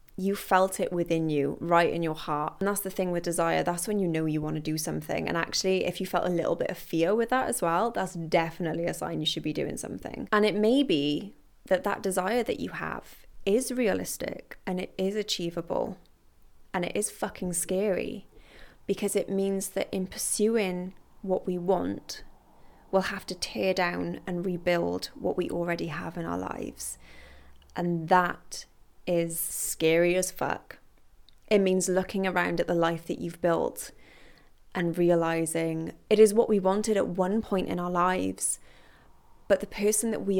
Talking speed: 185 wpm